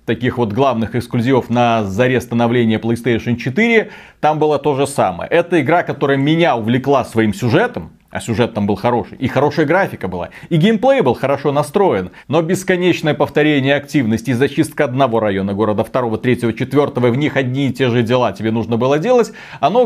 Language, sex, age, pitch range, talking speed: Russian, male, 30-49, 120-170 Hz, 180 wpm